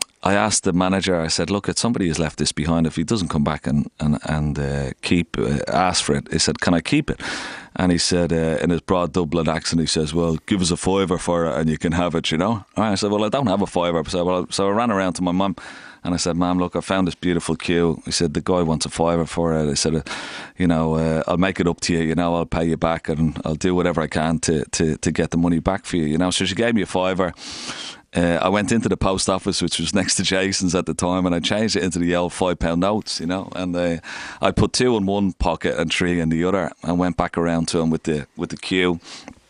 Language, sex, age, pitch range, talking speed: English, male, 30-49, 80-95 Hz, 280 wpm